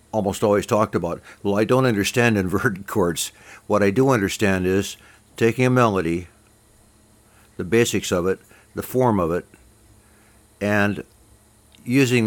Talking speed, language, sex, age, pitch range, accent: 135 wpm, English, male, 60-79, 100-115 Hz, American